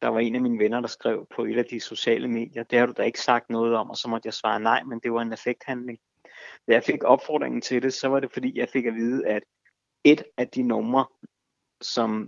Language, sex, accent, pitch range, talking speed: Danish, male, native, 110-130 Hz, 260 wpm